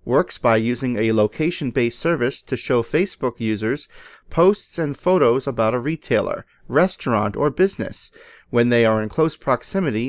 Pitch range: 120-165 Hz